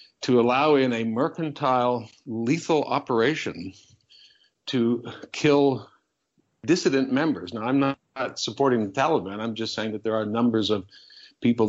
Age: 60-79